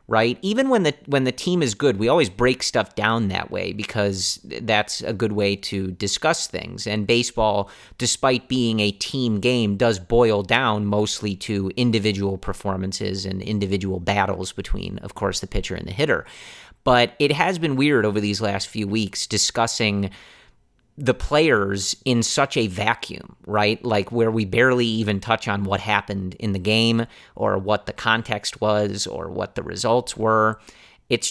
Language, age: English, 40-59